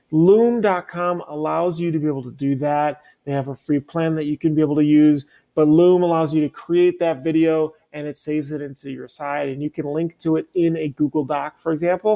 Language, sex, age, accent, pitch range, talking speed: English, male, 30-49, American, 145-180 Hz, 235 wpm